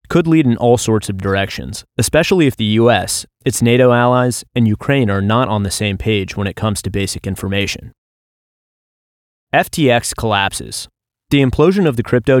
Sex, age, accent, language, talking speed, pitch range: male, 30-49, American, English, 170 wpm, 110-135 Hz